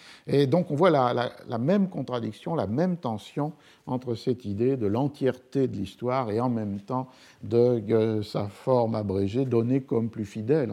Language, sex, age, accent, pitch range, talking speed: French, male, 50-69, French, 105-130 Hz, 185 wpm